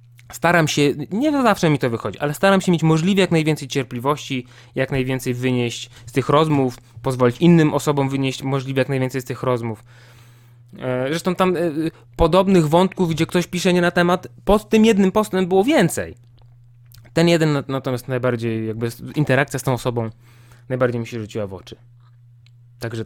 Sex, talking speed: male, 170 wpm